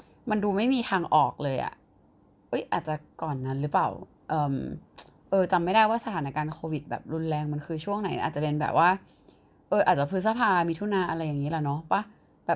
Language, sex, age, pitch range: Thai, female, 20-39, 150-190 Hz